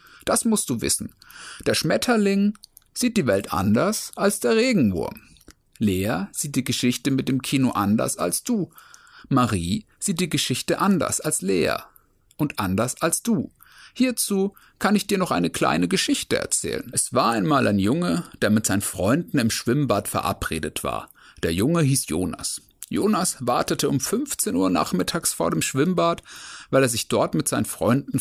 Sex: male